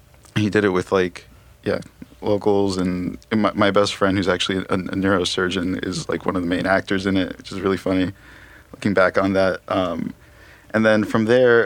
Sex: male